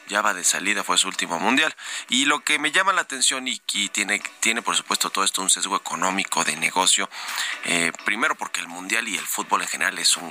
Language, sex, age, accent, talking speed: Spanish, male, 30-49, Mexican, 235 wpm